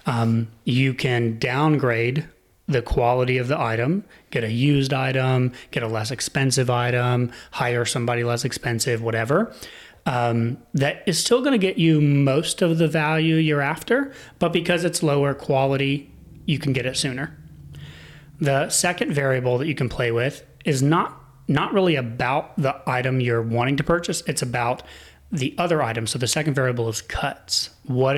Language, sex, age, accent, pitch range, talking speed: English, male, 30-49, American, 120-150 Hz, 165 wpm